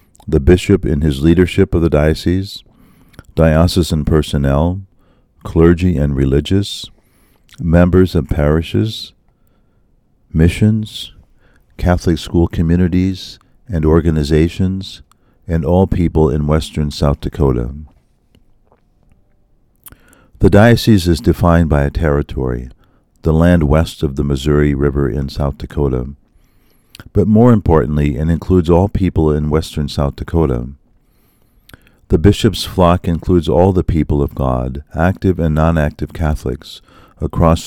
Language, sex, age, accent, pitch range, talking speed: English, male, 50-69, American, 75-95 Hz, 115 wpm